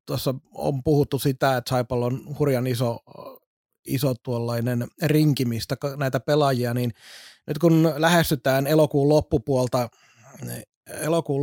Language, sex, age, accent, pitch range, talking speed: Finnish, male, 30-49, native, 125-150 Hz, 105 wpm